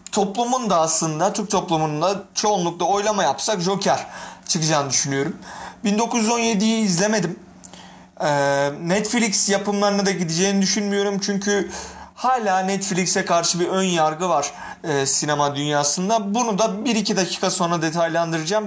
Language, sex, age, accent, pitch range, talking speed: Turkish, male, 40-59, native, 160-205 Hz, 115 wpm